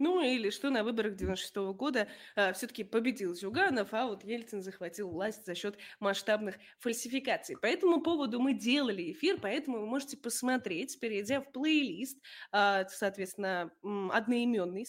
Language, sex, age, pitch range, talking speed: Russian, female, 20-39, 200-265 Hz, 140 wpm